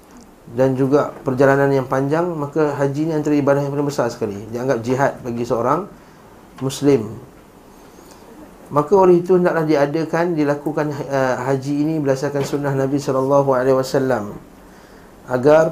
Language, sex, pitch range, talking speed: Malay, male, 130-150 Hz, 125 wpm